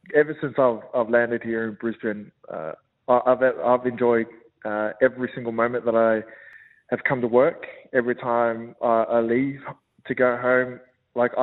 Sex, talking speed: male, 165 wpm